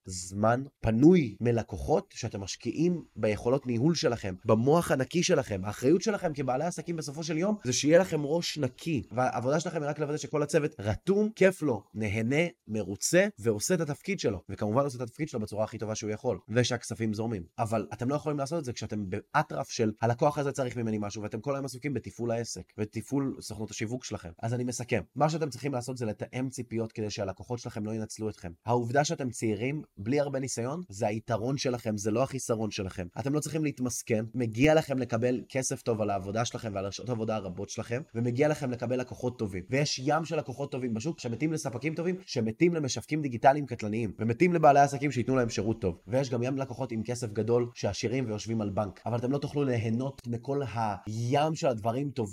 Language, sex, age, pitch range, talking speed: Hebrew, male, 20-39, 110-140 Hz, 160 wpm